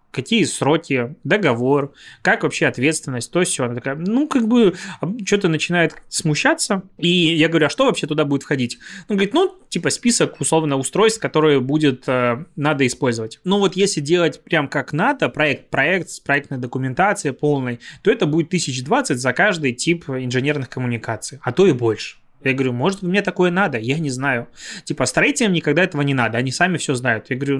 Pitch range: 130-175 Hz